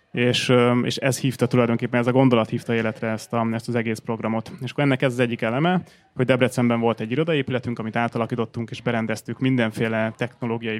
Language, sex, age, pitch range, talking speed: Hungarian, male, 20-39, 115-135 Hz, 185 wpm